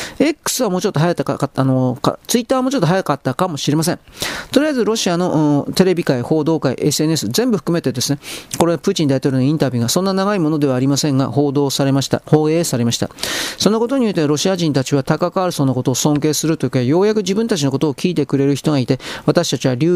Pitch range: 140-195 Hz